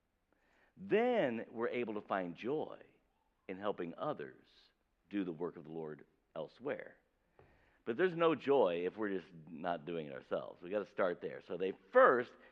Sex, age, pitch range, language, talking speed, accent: male, 50-69, 115-185 Hz, English, 170 wpm, American